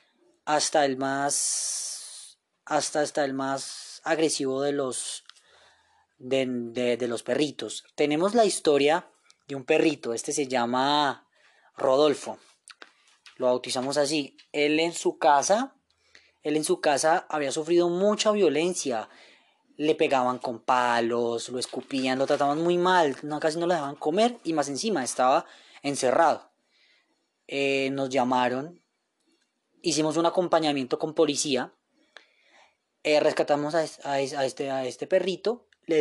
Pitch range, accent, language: 125-160 Hz, Colombian, Spanish